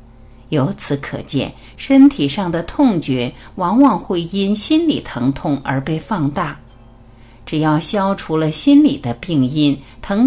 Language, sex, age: Chinese, female, 50-69